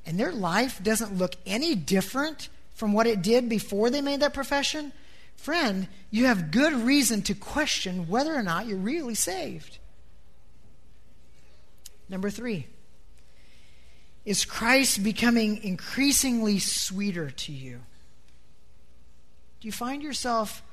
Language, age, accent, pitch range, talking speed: English, 40-59, American, 140-225 Hz, 120 wpm